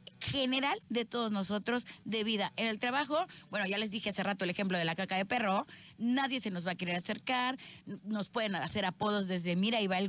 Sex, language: female, Spanish